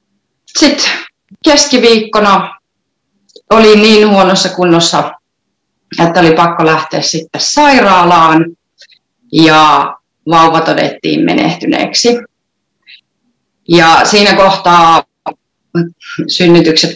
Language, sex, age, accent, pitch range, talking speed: Finnish, female, 30-49, native, 155-195 Hz, 70 wpm